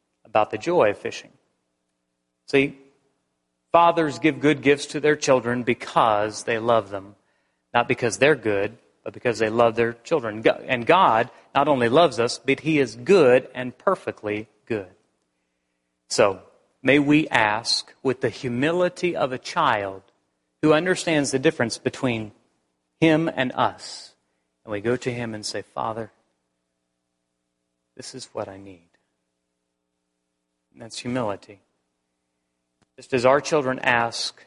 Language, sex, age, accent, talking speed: English, male, 40-59, American, 140 wpm